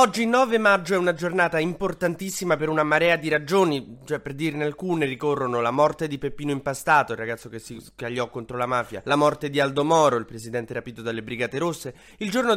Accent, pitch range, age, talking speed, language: native, 125-160 Hz, 20-39, 205 wpm, Italian